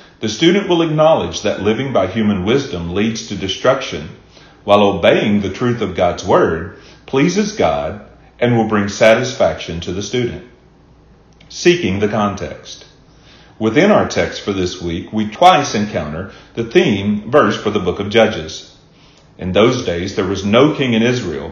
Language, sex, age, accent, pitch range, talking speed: English, male, 40-59, American, 95-125 Hz, 160 wpm